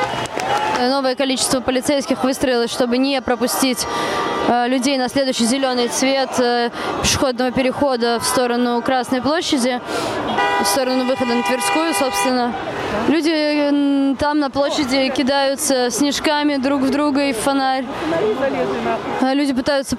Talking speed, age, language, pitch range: 115 wpm, 20-39, Russian, 265-360 Hz